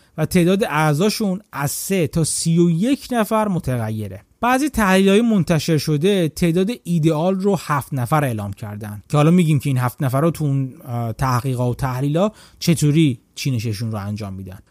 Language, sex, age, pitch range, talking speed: Persian, male, 30-49, 130-200 Hz, 155 wpm